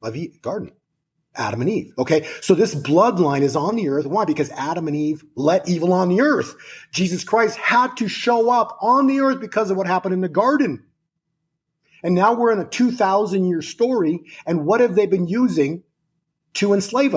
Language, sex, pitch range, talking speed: English, male, 150-215 Hz, 190 wpm